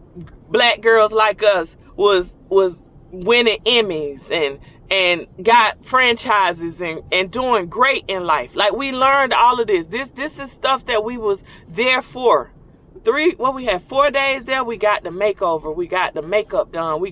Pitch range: 175-250 Hz